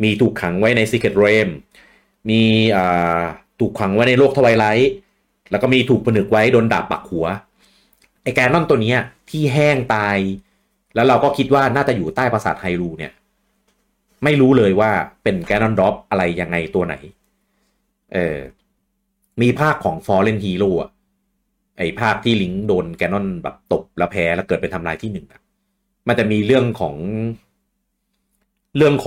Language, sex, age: Thai, male, 30-49